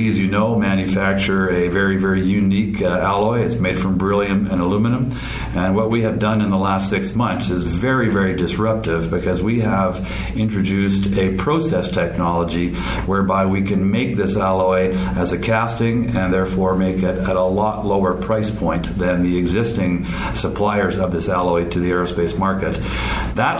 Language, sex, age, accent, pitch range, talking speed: English, male, 50-69, American, 90-105 Hz, 175 wpm